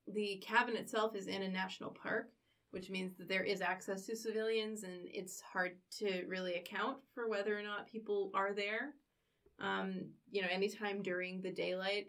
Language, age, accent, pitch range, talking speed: English, 20-39, American, 185-205 Hz, 180 wpm